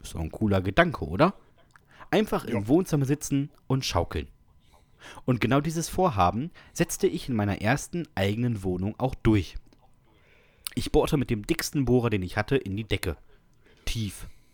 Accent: German